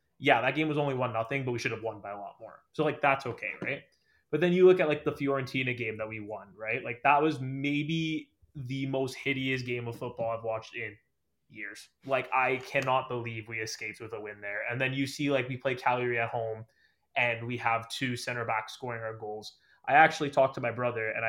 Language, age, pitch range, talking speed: English, 20-39, 115-135 Hz, 235 wpm